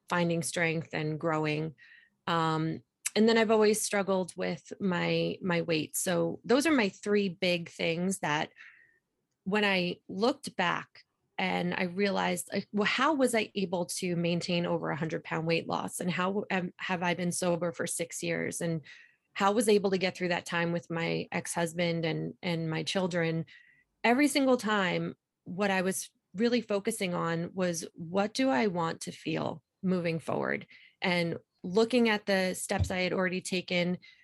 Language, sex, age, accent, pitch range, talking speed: English, female, 30-49, American, 170-210 Hz, 170 wpm